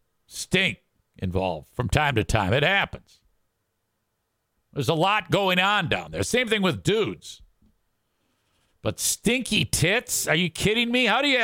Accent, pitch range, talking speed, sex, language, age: American, 110-160 Hz, 150 wpm, male, English, 50-69